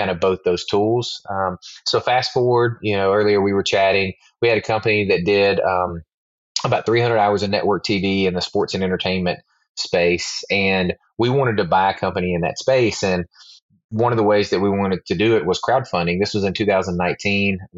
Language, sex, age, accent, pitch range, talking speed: English, male, 20-39, American, 90-105 Hz, 205 wpm